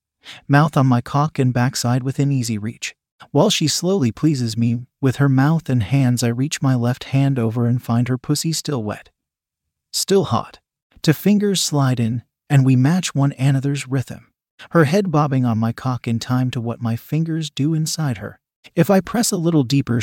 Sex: male